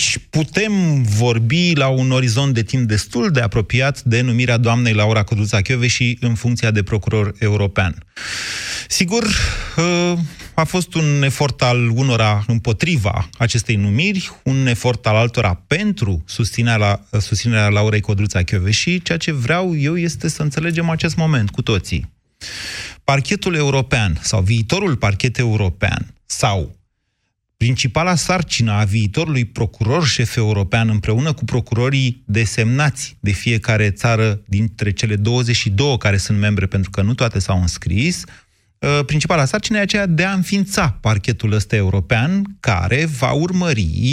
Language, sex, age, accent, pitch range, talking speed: Romanian, male, 30-49, native, 105-145 Hz, 135 wpm